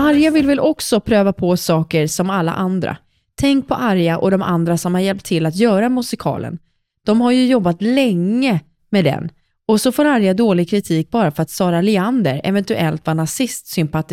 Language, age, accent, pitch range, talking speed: Swedish, 20-39, native, 175-245 Hz, 185 wpm